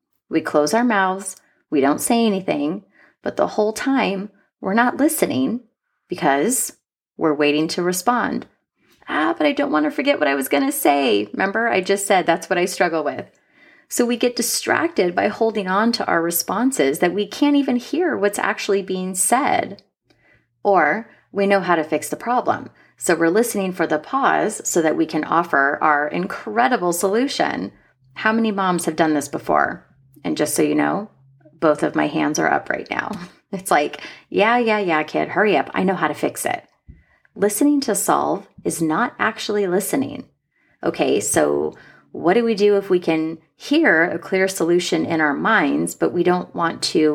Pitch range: 160-245 Hz